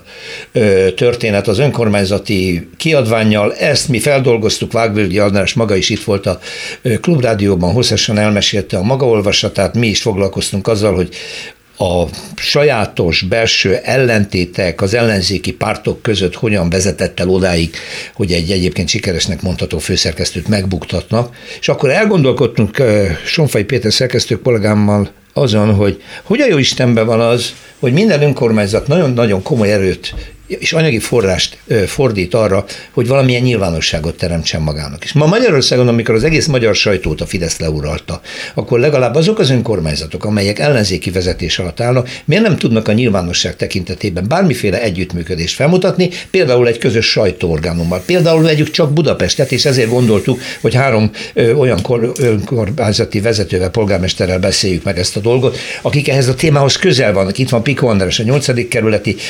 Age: 60-79